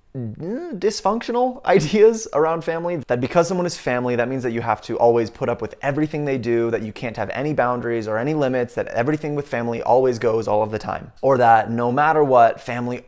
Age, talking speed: 20-39, 215 wpm